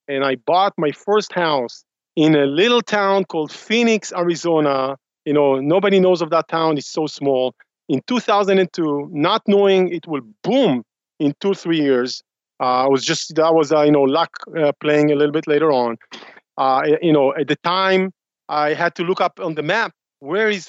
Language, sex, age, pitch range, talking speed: English, male, 40-59, 145-185 Hz, 195 wpm